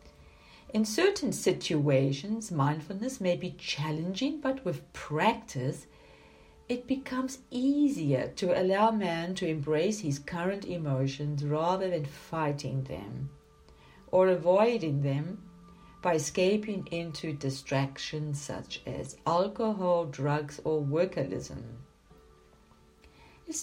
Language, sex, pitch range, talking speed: English, female, 140-210 Hz, 100 wpm